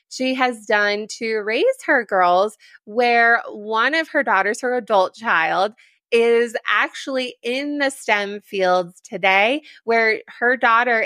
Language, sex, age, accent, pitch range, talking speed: English, female, 20-39, American, 200-255 Hz, 135 wpm